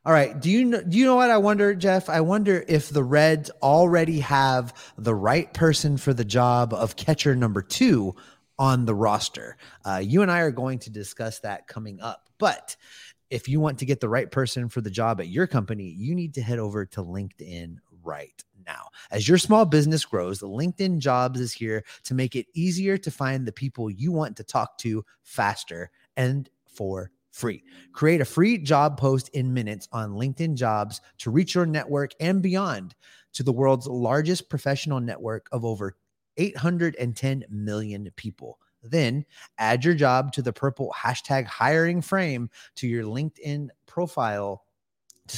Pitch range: 110-160 Hz